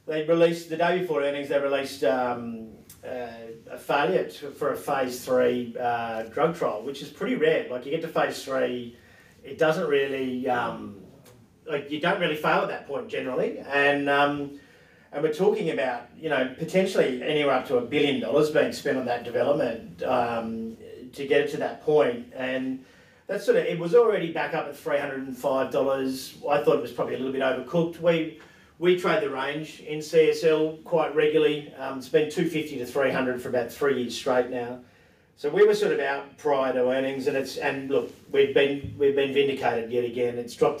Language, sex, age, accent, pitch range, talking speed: English, male, 40-59, Australian, 120-155 Hz, 200 wpm